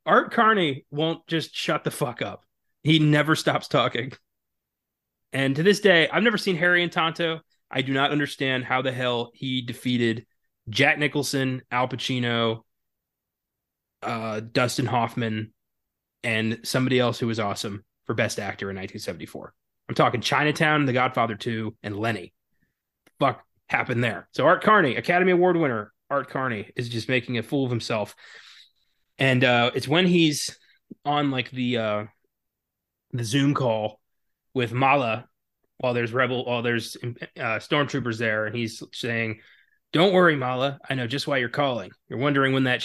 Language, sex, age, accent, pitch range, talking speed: English, male, 20-39, American, 115-145 Hz, 160 wpm